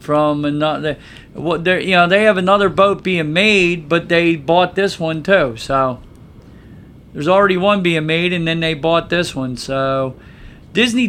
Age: 50-69